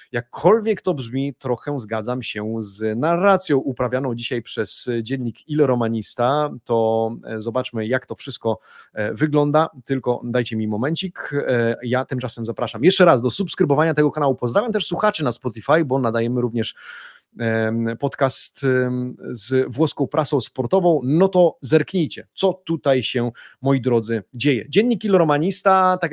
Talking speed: 135 wpm